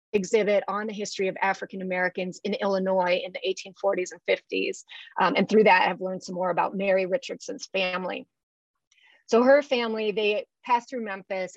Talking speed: 175 wpm